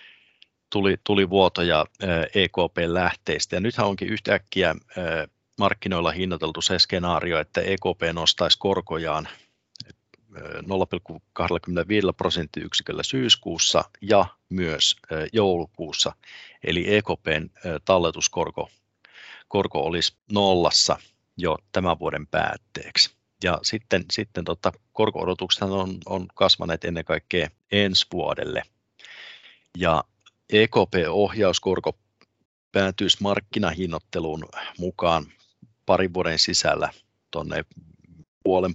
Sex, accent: male, native